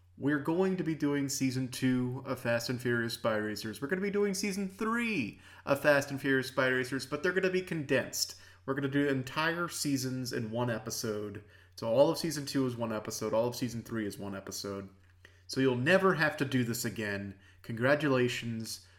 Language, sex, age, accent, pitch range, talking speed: English, male, 30-49, American, 105-140 Hz, 205 wpm